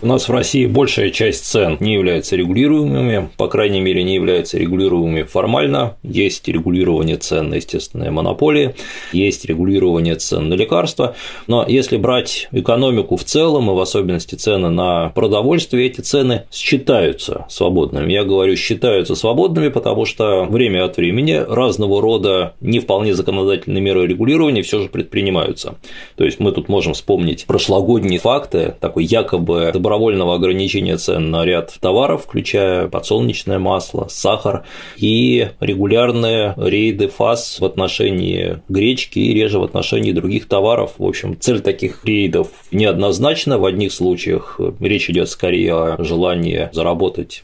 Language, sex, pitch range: Russian, male, 90-120 Hz